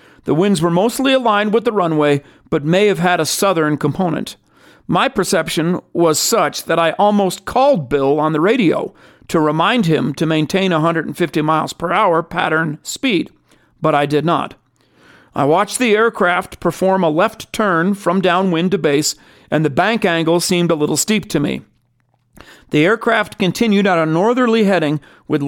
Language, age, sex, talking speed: English, 50-69, male, 170 wpm